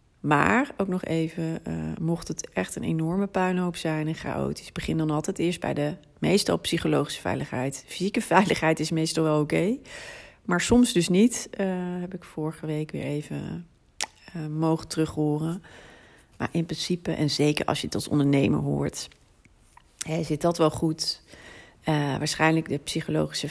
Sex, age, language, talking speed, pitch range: female, 40-59, Dutch, 165 wpm, 150-180 Hz